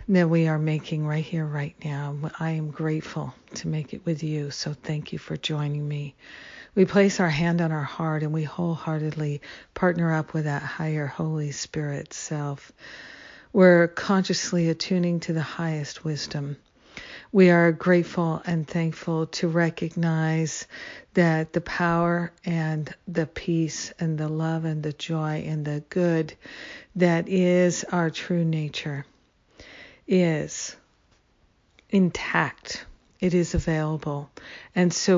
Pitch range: 155-175 Hz